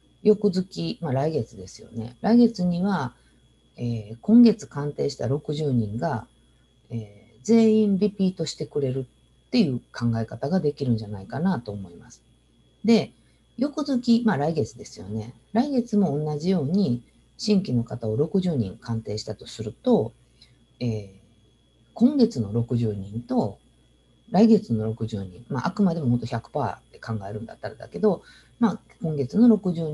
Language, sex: Japanese, female